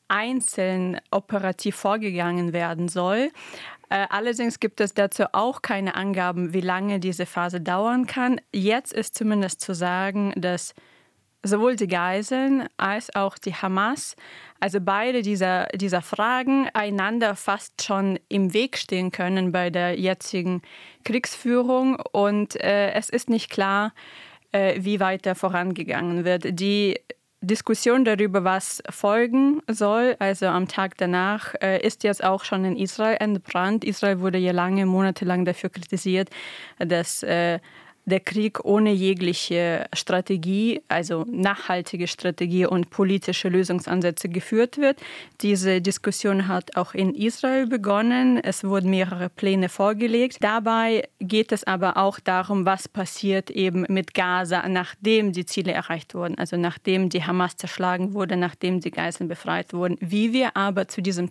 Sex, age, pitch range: female, 20-39, 180-215 Hz